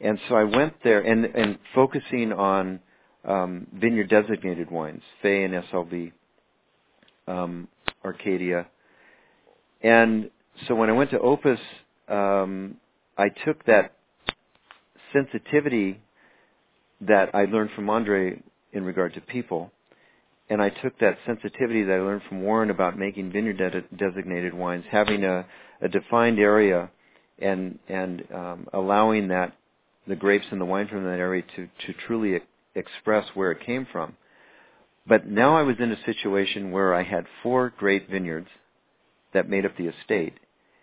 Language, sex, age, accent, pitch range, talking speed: English, male, 50-69, American, 90-110 Hz, 145 wpm